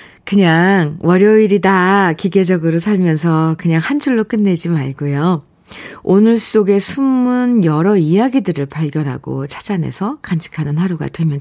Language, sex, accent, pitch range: Korean, female, native, 170-235 Hz